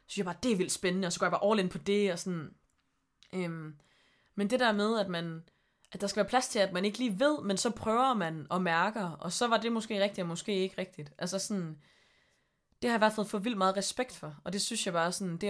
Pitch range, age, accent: 165-210 Hz, 20-39, native